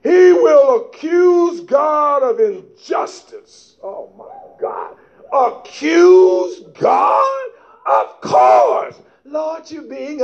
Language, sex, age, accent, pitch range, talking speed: English, male, 50-69, American, 285-455 Hz, 95 wpm